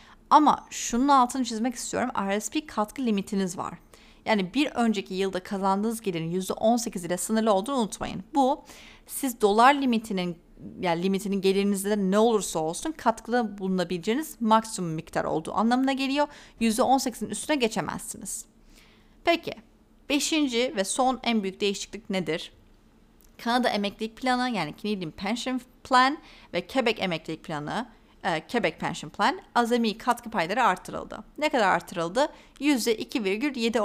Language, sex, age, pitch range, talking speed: Turkish, female, 30-49, 195-255 Hz, 125 wpm